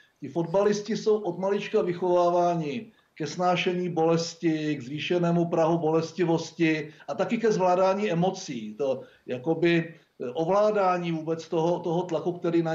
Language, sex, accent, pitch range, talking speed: Czech, male, native, 160-195 Hz, 125 wpm